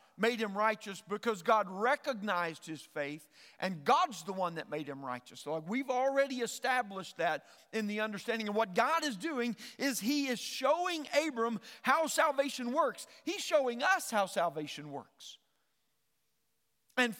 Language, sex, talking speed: English, male, 155 wpm